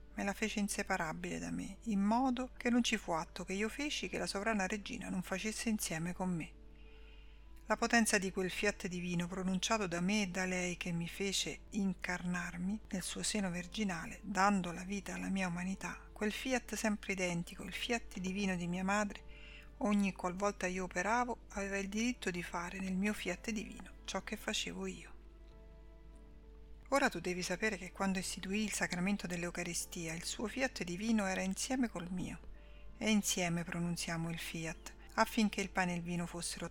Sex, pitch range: female, 175-210 Hz